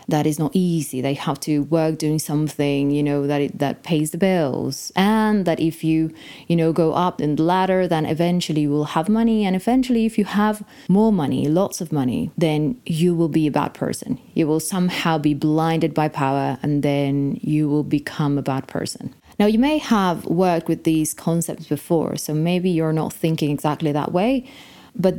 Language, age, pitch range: English, 30-49, 150-180 Hz